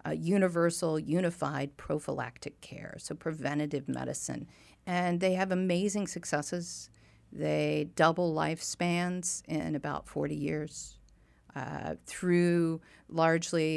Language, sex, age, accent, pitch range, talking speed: English, female, 50-69, American, 140-175 Hz, 100 wpm